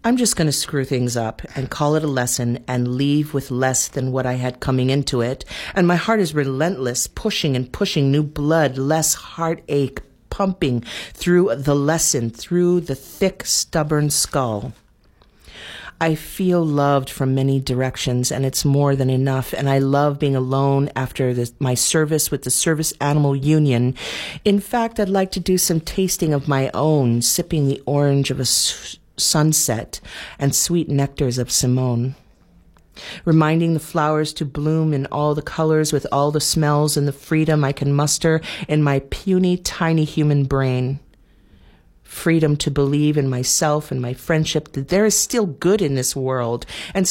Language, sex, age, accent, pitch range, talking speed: English, female, 40-59, American, 135-160 Hz, 170 wpm